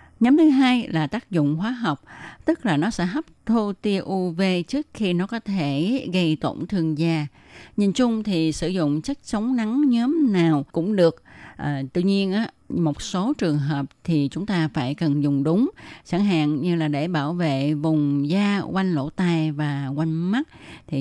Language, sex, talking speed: Vietnamese, female, 195 wpm